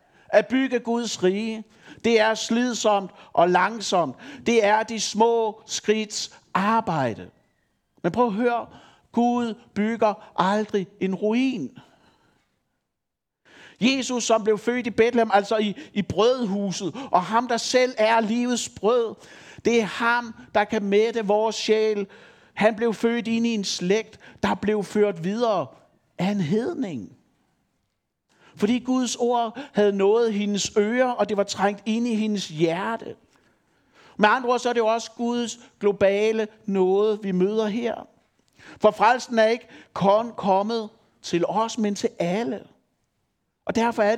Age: 60-79